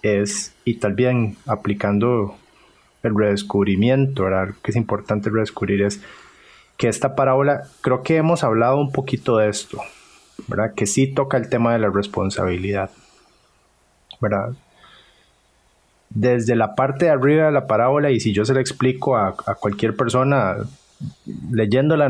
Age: 30-49